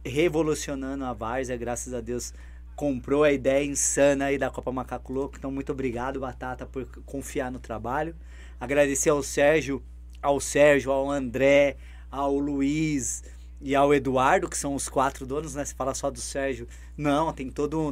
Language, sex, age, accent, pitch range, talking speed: Portuguese, male, 20-39, Brazilian, 135-165 Hz, 165 wpm